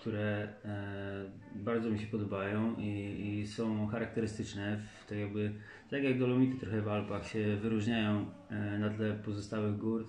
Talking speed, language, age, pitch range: 150 wpm, Polish, 20-39, 105-110 Hz